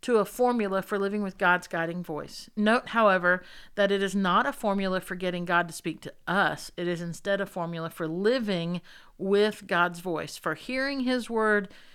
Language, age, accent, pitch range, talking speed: English, 50-69, American, 170-205 Hz, 190 wpm